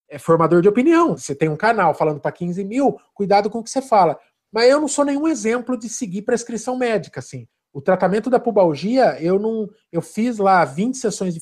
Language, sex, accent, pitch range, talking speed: Portuguese, male, Brazilian, 180-230 Hz, 215 wpm